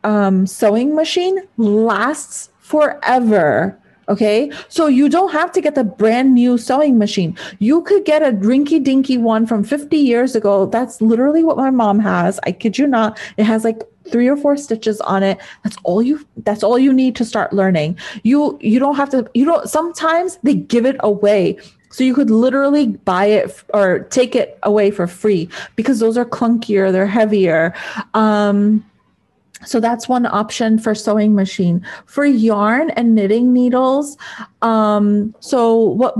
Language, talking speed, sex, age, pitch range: English, 170 wpm, female, 30-49, 205-265 Hz